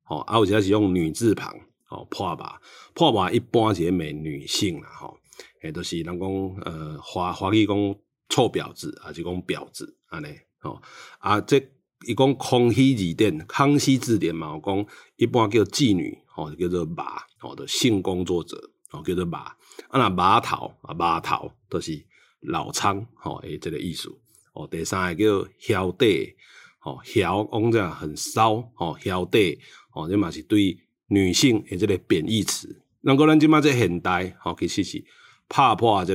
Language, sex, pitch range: Chinese, male, 90-120 Hz